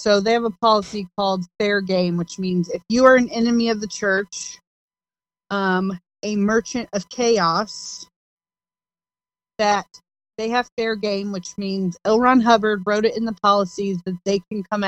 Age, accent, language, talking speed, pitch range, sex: 30-49, American, English, 170 wpm, 185-225 Hz, female